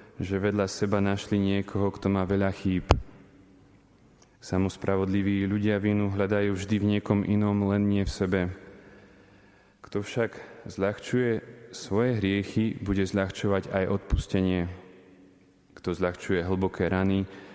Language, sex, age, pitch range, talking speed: Slovak, male, 20-39, 90-100 Hz, 115 wpm